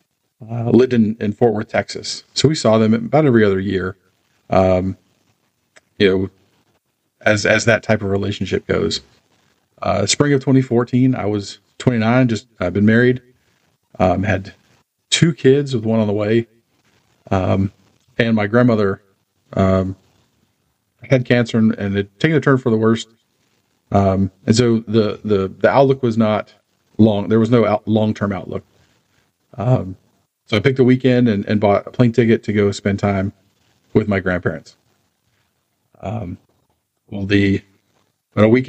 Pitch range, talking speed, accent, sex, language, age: 100-125 Hz, 165 wpm, American, male, English, 40-59